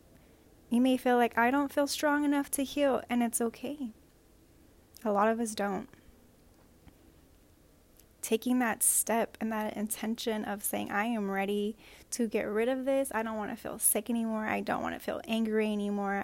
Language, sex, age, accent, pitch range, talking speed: English, female, 10-29, American, 210-240 Hz, 180 wpm